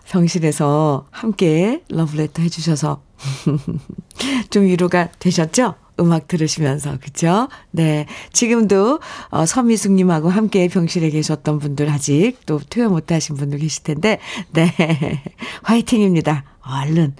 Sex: female